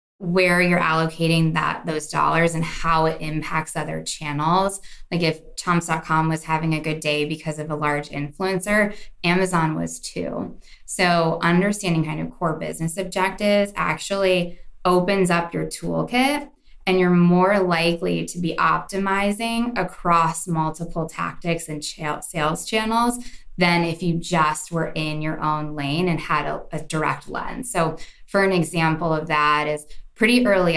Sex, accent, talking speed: female, American, 150 wpm